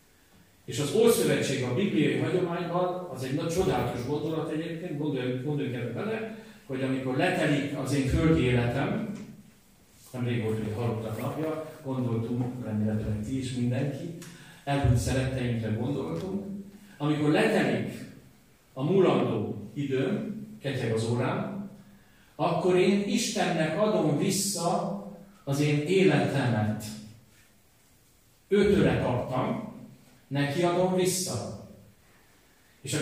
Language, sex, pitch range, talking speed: Hungarian, male, 120-180 Hz, 105 wpm